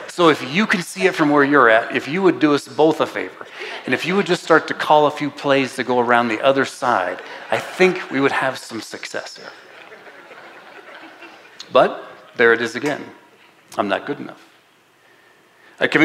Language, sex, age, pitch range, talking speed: English, male, 40-59, 105-145 Hz, 200 wpm